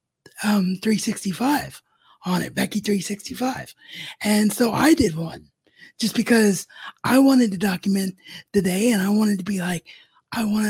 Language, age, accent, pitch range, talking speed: English, 20-39, American, 185-240 Hz, 150 wpm